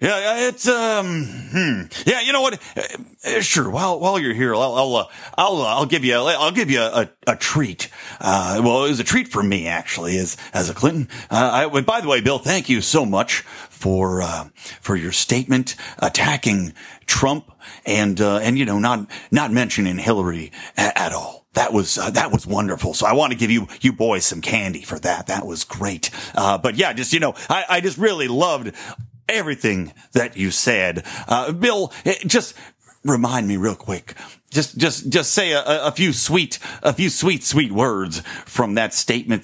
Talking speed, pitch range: 200 wpm, 105-155 Hz